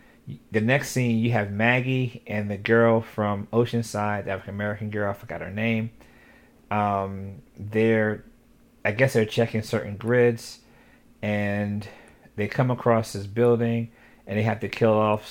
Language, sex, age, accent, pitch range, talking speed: English, male, 40-59, American, 105-120 Hz, 150 wpm